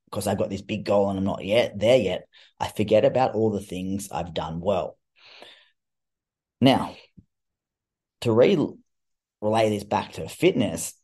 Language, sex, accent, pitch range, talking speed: English, male, Australian, 95-105 Hz, 160 wpm